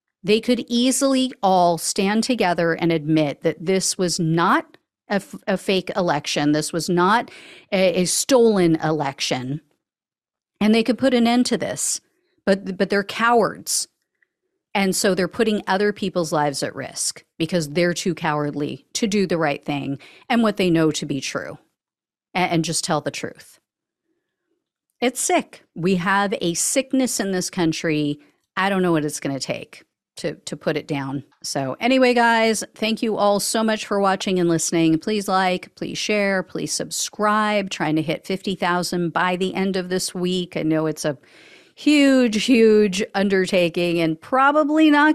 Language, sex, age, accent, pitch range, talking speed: English, female, 50-69, American, 165-225 Hz, 165 wpm